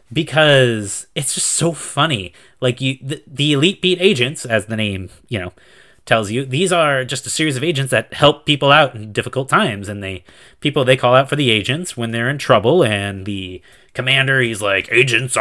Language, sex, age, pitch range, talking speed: English, male, 30-49, 115-165 Hz, 205 wpm